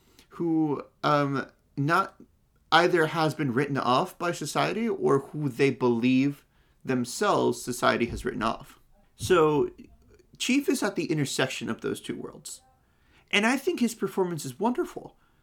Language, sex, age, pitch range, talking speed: English, male, 30-49, 120-160 Hz, 140 wpm